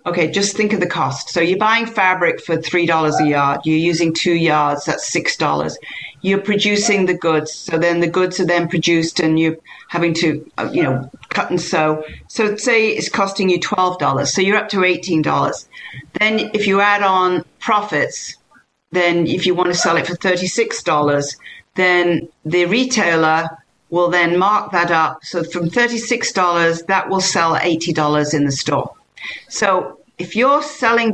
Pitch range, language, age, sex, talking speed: 165-200 Hz, English, 50-69, female, 170 wpm